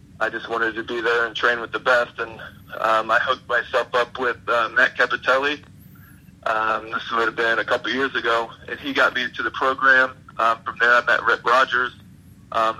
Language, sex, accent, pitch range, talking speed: English, male, American, 110-125 Hz, 210 wpm